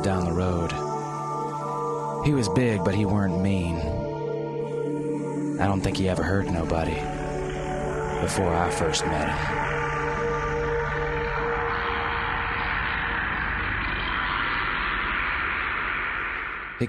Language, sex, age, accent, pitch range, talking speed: English, male, 30-49, American, 90-125 Hz, 80 wpm